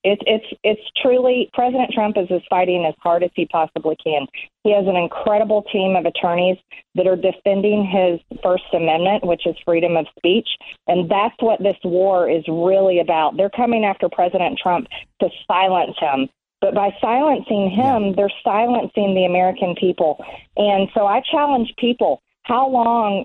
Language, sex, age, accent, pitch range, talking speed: English, female, 40-59, American, 185-225 Hz, 165 wpm